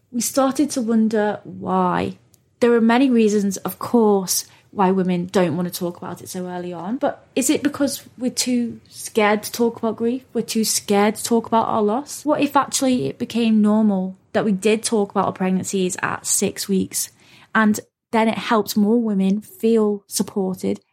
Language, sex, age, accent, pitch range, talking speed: English, female, 20-39, British, 190-225 Hz, 185 wpm